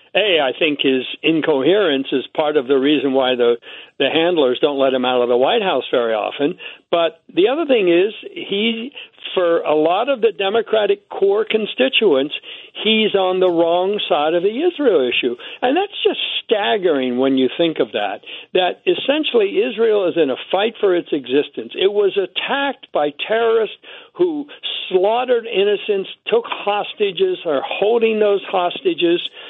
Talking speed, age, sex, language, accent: 165 wpm, 60-79, male, English, American